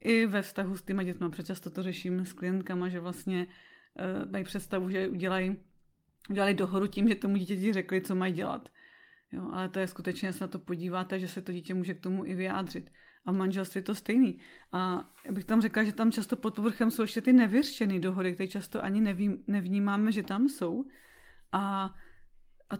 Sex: female